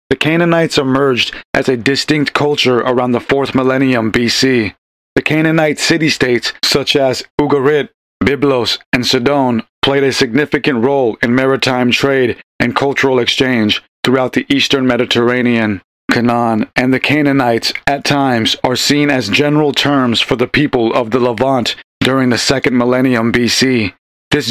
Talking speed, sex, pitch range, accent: 140 wpm, male, 120-140 Hz, American